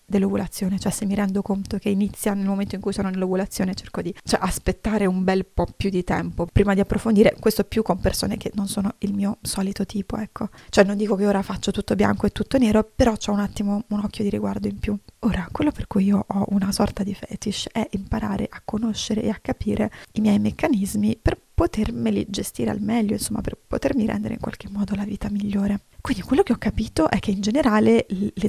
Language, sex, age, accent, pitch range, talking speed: Italian, female, 20-39, native, 200-225 Hz, 220 wpm